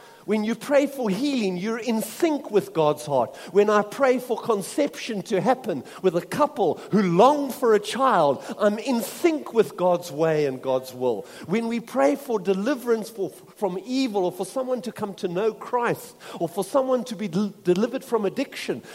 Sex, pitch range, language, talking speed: male, 170-245 Hz, English, 185 wpm